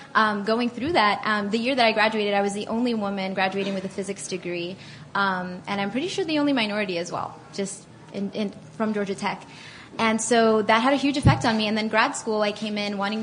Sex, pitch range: female, 195-225 Hz